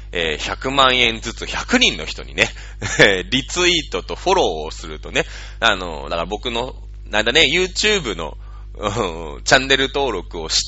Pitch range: 100-160 Hz